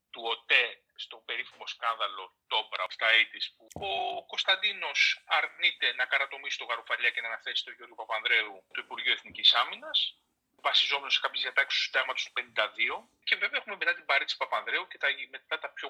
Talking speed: 170 wpm